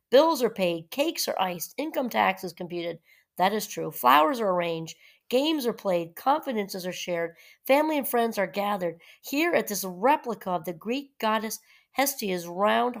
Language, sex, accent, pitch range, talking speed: English, female, American, 180-230 Hz, 170 wpm